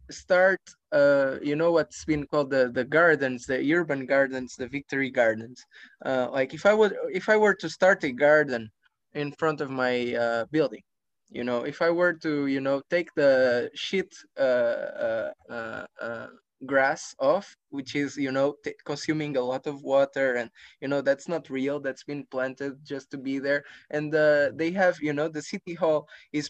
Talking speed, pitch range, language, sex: 190 wpm, 130-165 Hz, English, male